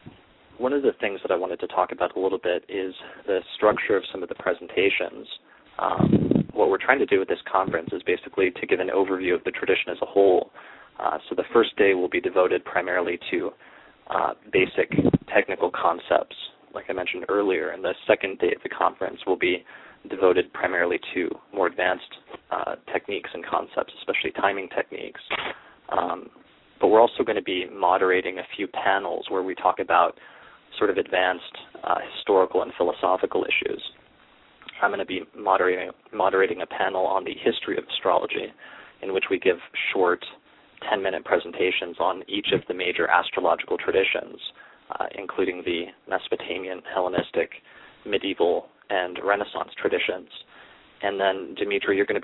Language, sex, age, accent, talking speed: English, male, 20-39, American, 170 wpm